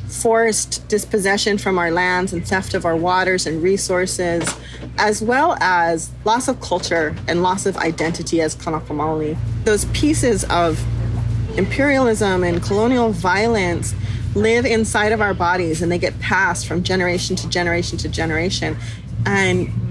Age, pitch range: 30-49, 155-210 Hz